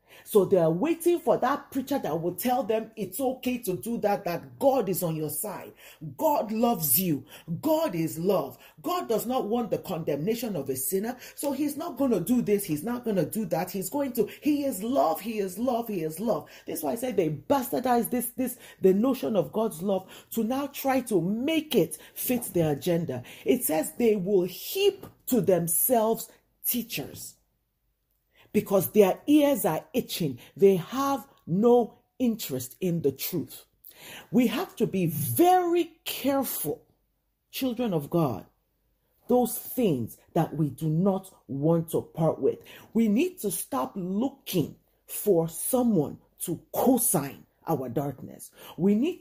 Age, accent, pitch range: 40-59, Nigerian, 170-255 Hz